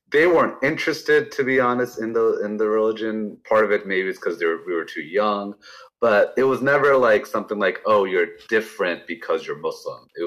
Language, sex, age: Urdu, male, 30-49